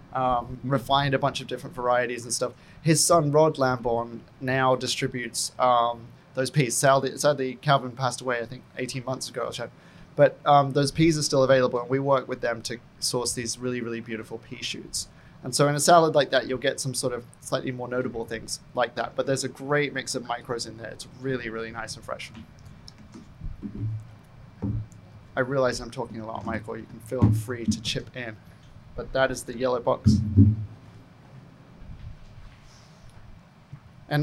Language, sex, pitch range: English, male, 120-145 Hz